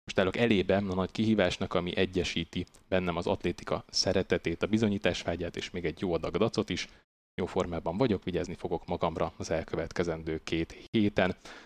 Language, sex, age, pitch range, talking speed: Hungarian, male, 30-49, 90-100 Hz, 155 wpm